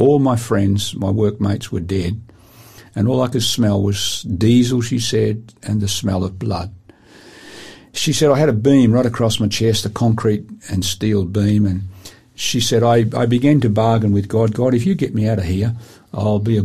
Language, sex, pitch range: English, male, 100-125 Hz